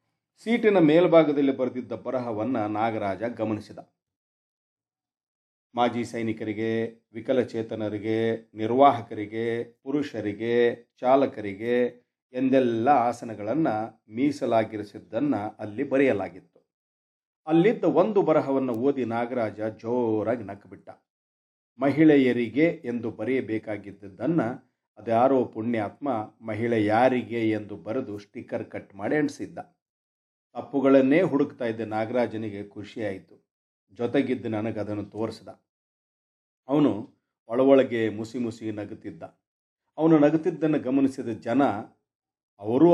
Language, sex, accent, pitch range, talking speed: Kannada, male, native, 110-140 Hz, 80 wpm